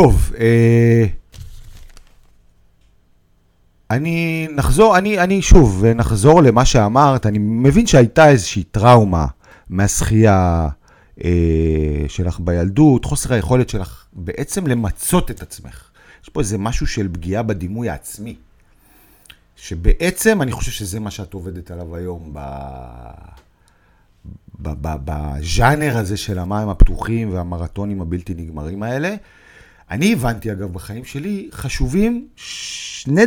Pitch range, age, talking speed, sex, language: 90-140 Hz, 40-59, 115 wpm, male, Hebrew